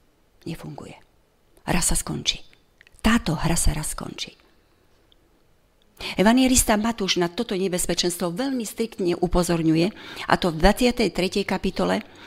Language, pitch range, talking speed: Slovak, 170-220 Hz, 110 wpm